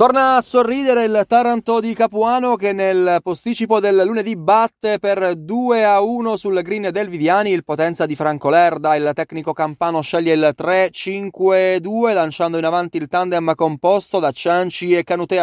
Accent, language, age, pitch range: native, Italian, 20-39, 165-205 Hz